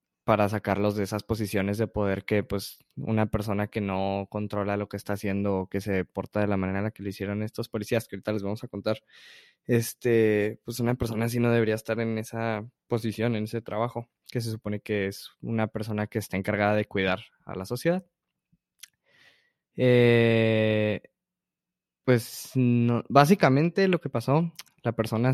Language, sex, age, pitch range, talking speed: Spanish, male, 20-39, 105-125 Hz, 180 wpm